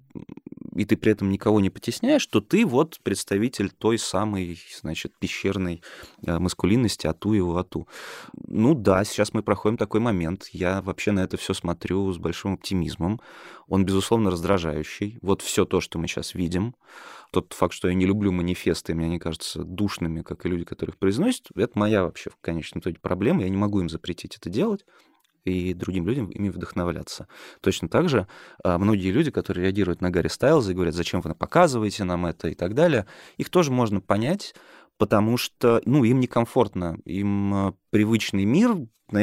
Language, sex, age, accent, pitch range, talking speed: Russian, male, 20-39, native, 90-110 Hz, 170 wpm